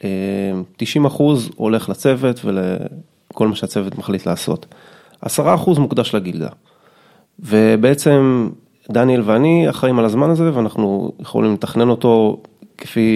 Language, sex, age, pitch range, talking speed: Hebrew, male, 30-49, 110-155 Hz, 105 wpm